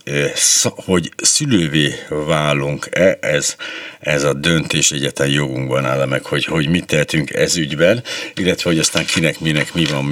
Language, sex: Hungarian, male